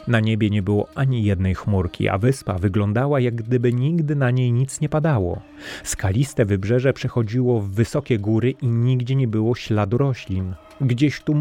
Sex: male